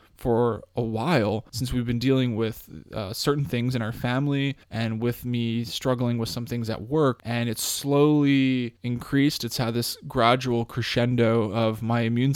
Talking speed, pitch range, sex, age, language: 170 wpm, 115-130 Hz, male, 20-39, English